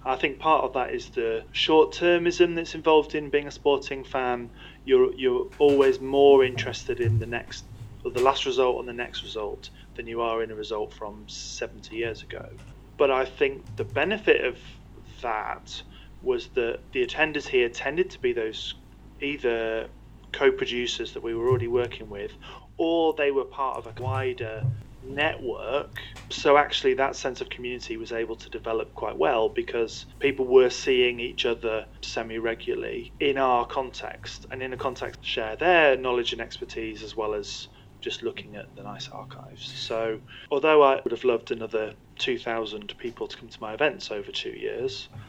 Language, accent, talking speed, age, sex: English, British, 175 wpm, 30-49, male